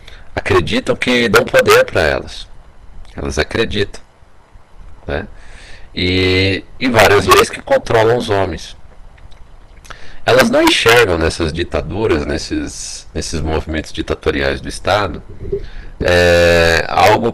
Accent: Brazilian